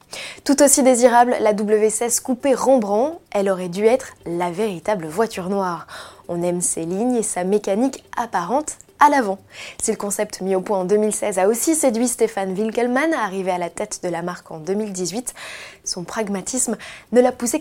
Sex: female